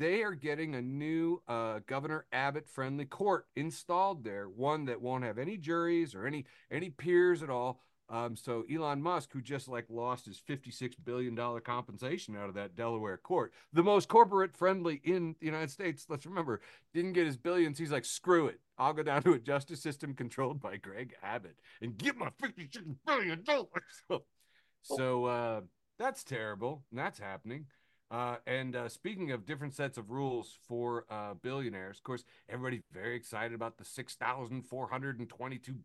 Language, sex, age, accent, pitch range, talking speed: English, male, 40-59, American, 120-165 Hz, 165 wpm